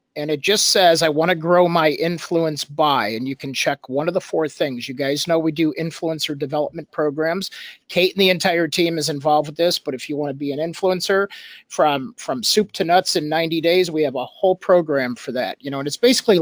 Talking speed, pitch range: 240 wpm, 140-175 Hz